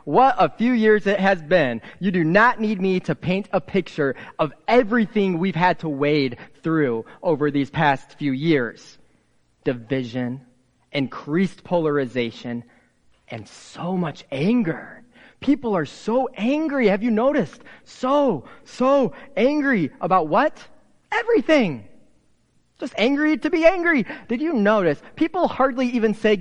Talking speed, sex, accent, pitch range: 135 wpm, male, American, 150-240 Hz